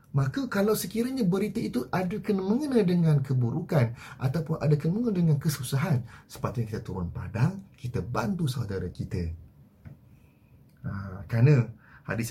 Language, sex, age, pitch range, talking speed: Malay, male, 30-49, 120-165 Hz, 120 wpm